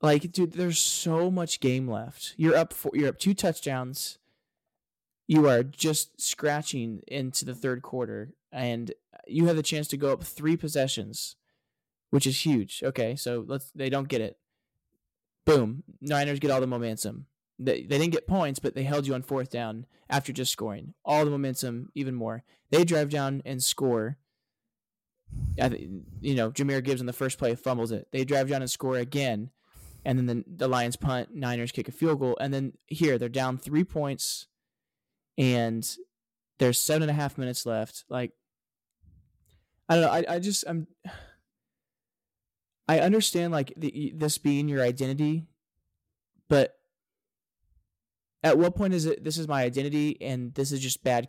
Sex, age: male, 20-39